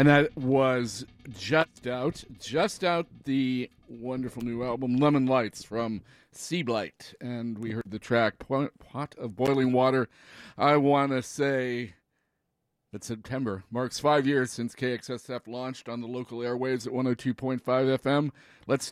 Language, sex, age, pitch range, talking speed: English, male, 50-69, 115-140 Hz, 140 wpm